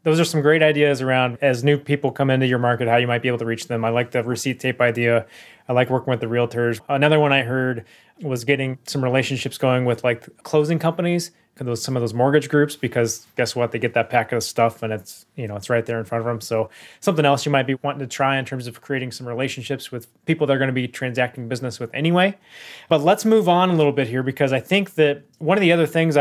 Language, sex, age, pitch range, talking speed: English, male, 20-39, 125-160 Hz, 265 wpm